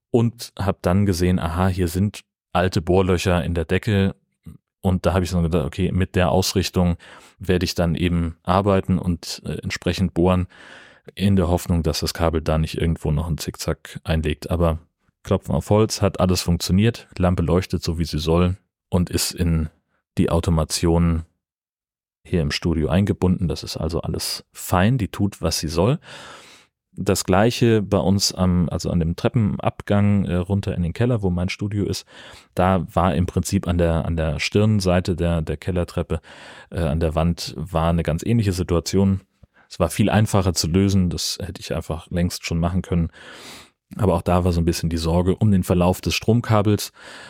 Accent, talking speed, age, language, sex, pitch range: German, 180 wpm, 30-49, German, male, 85-95 Hz